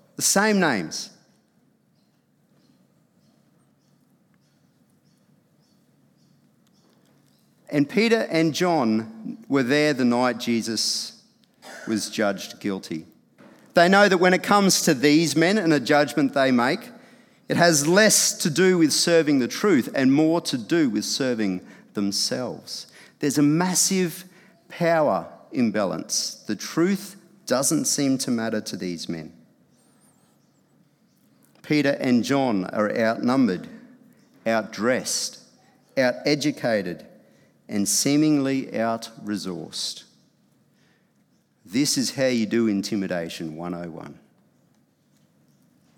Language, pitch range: English, 115-180 Hz